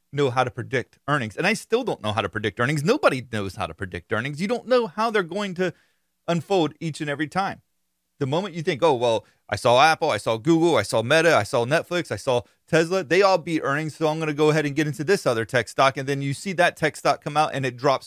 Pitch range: 115-160 Hz